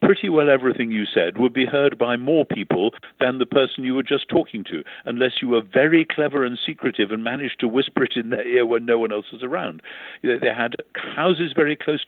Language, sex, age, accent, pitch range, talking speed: English, male, 60-79, British, 110-150 Hz, 225 wpm